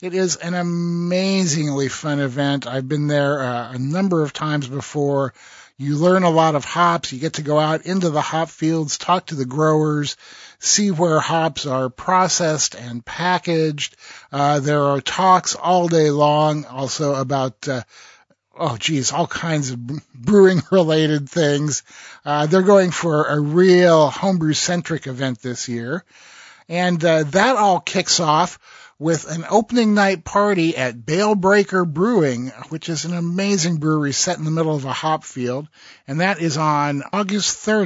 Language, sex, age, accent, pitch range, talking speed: English, male, 50-69, American, 140-175 Hz, 160 wpm